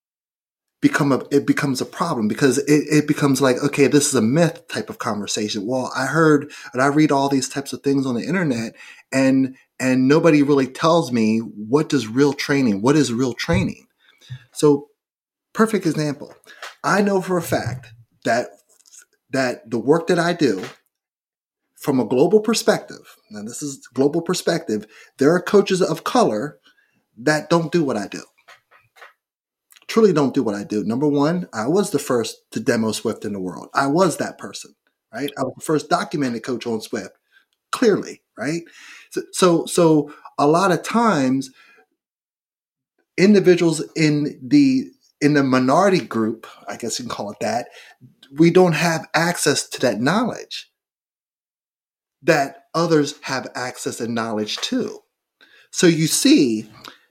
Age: 30-49